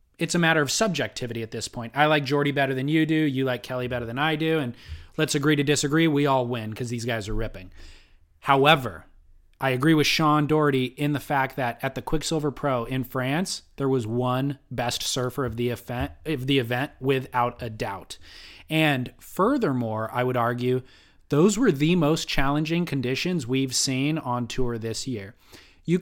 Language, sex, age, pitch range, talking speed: English, male, 20-39, 125-160 Hz, 185 wpm